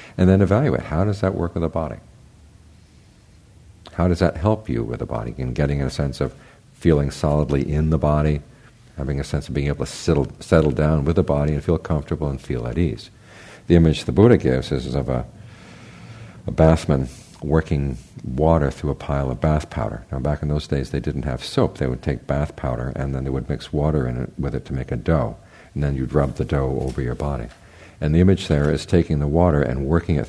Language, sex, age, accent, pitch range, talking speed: English, male, 50-69, American, 70-85 Hz, 225 wpm